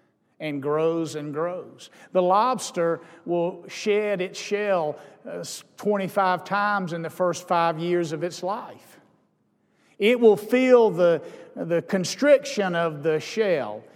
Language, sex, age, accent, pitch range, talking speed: English, male, 50-69, American, 175-230 Hz, 125 wpm